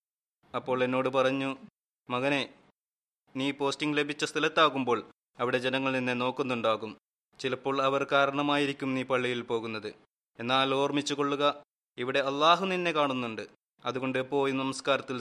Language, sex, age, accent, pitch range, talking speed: Malayalam, male, 20-39, native, 125-140 Hz, 110 wpm